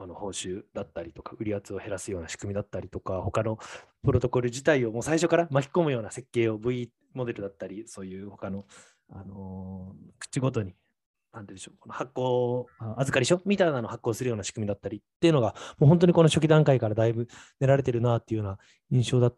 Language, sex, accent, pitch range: Japanese, male, native, 110-160 Hz